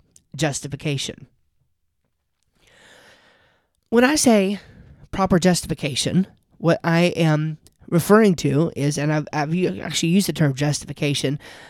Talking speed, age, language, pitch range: 105 wpm, 30-49, English, 145-175 Hz